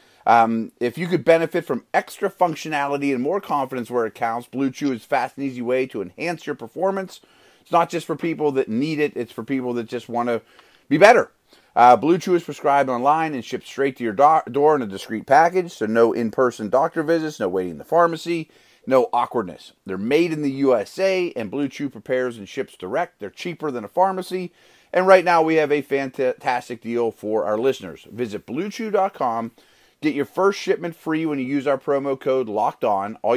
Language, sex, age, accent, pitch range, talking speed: English, male, 30-49, American, 120-160 Hz, 205 wpm